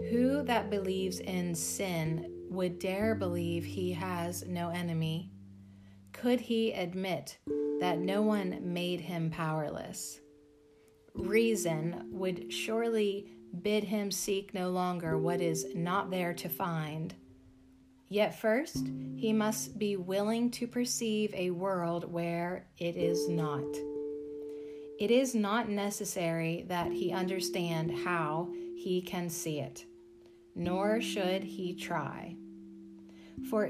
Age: 30-49